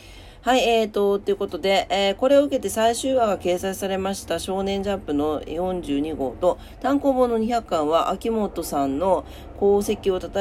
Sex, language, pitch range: female, Japanese, 140-215 Hz